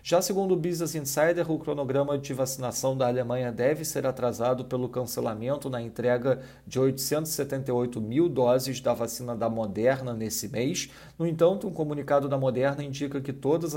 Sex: male